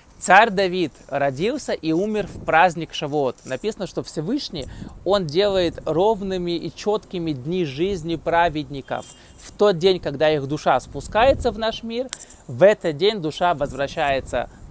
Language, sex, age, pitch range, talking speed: Russian, male, 20-39, 155-200 Hz, 140 wpm